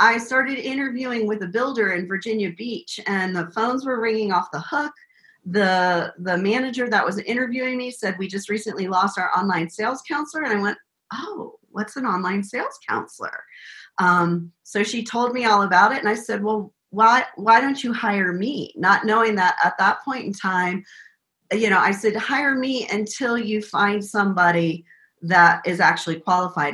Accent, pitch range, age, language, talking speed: American, 180-225 Hz, 40-59, English, 185 wpm